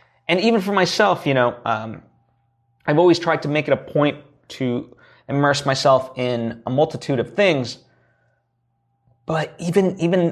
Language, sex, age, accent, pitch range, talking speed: English, male, 20-39, American, 120-170 Hz, 150 wpm